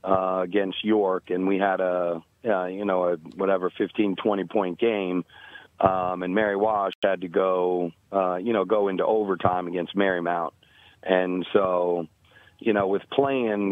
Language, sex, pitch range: English, male, 95-105 Hz